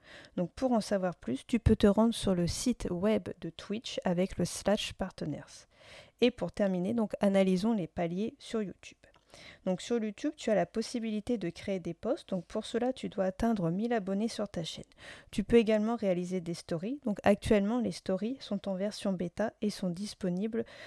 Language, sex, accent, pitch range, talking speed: French, female, French, 185-225 Hz, 195 wpm